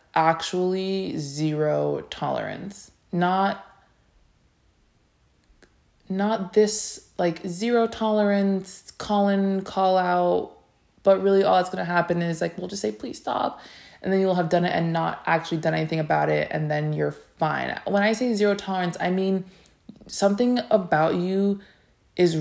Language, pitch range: English, 155-205 Hz